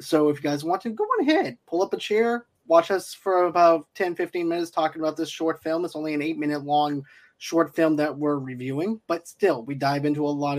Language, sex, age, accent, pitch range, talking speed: English, male, 20-39, American, 145-170 Hz, 230 wpm